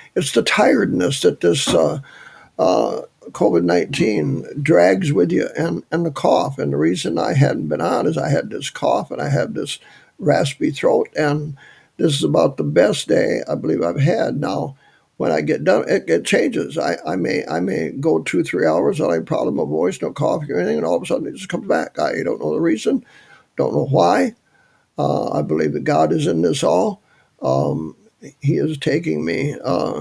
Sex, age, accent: male, 60-79, American